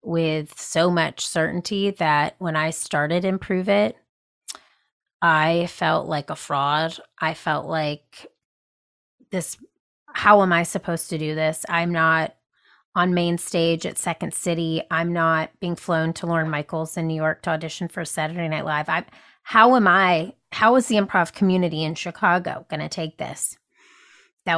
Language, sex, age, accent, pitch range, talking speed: English, female, 30-49, American, 160-195 Hz, 160 wpm